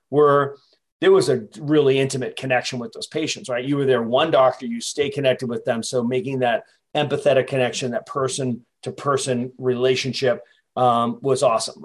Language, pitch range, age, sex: English, 125-145 Hz, 40-59, male